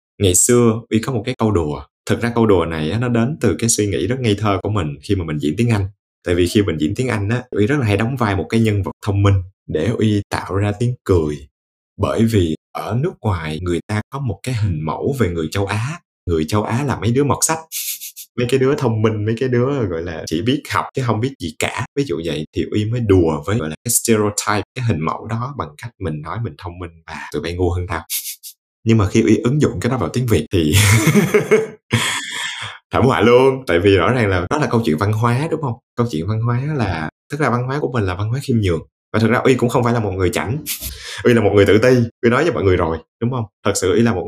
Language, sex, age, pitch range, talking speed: Vietnamese, male, 20-39, 90-120 Hz, 270 wpm